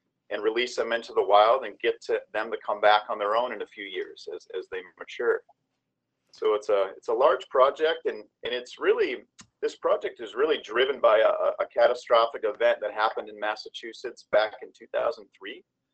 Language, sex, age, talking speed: English, male, 40-59, 195 wpm